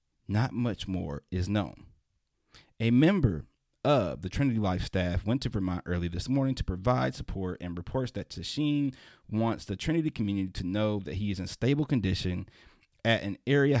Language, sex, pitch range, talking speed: English, male, 90-130 Hz, 175 wpm